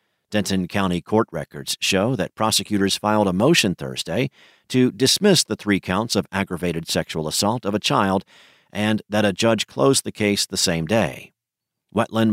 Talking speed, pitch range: 165 wpm, 90-110 Hz